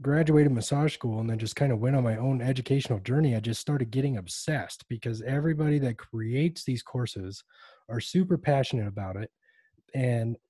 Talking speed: 175 wpm